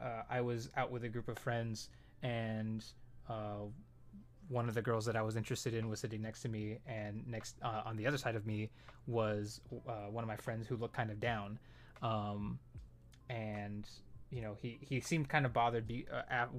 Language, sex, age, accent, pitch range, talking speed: English, male, 20-39, American, 110-125 Hz, 205 wpm